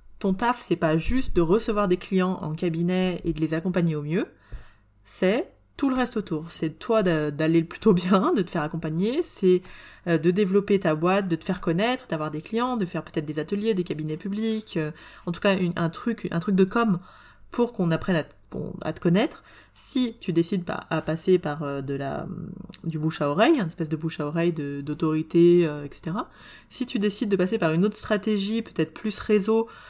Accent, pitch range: French, 160-205 Hz